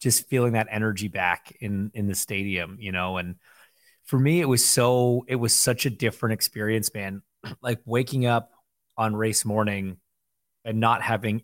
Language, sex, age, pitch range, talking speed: English, male, 30-49, 105-125 Hz, 175 wpm